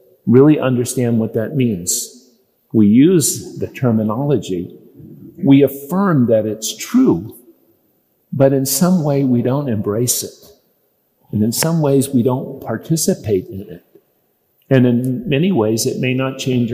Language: English